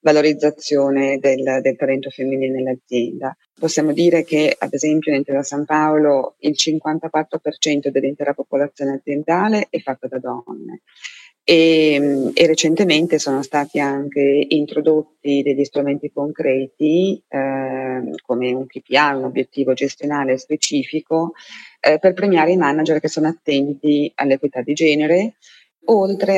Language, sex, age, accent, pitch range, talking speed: Italian, female, 30-49, native, 135-155 Hz, 125 wpm